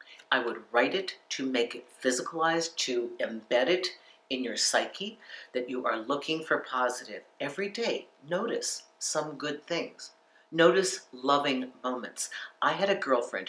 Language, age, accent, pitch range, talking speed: English, 50-69, American, 125-155 Hz, 145 wpm